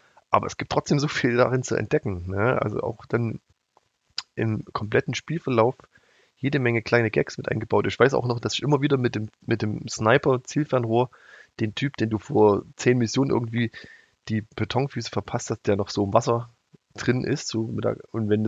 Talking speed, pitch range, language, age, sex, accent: 190 wpm, 105-130 Hz, German, 20-39, male, German